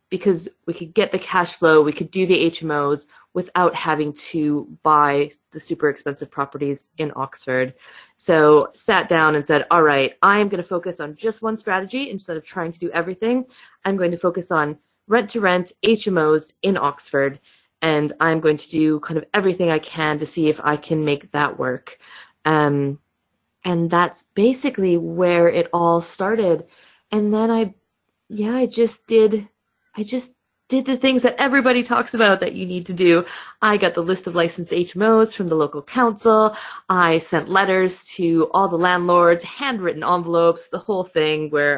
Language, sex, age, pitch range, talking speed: English, female, 30-49, 155-205 Hz, 180 wpm